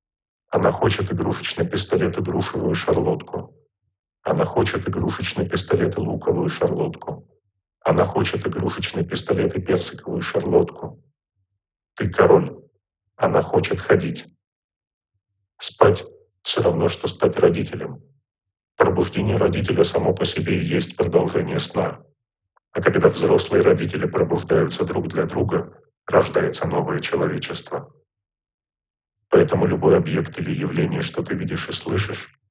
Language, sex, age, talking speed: Russian, male, 40-59, 115 wpm